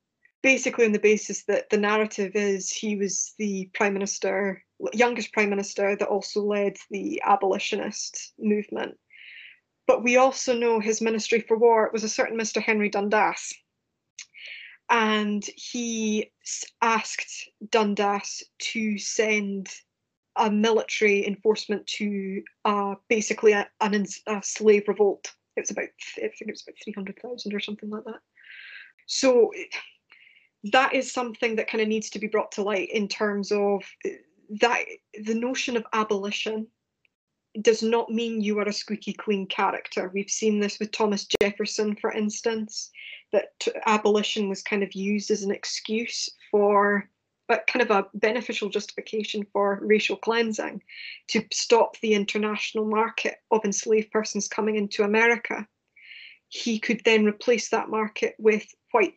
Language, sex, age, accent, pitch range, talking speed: English, female, 20-39, British, 205-230 Hz, 145 wpm